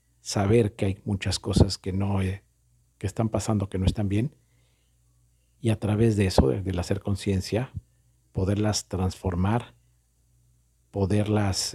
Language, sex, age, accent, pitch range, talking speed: Spanish, male, 50-69, Mexican, 90-110 Hz, 145 wpm